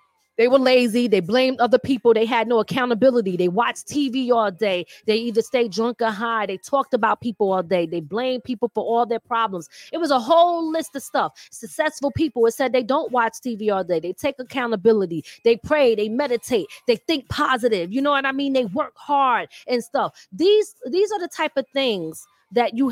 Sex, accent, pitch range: female, American, 215-300 Hz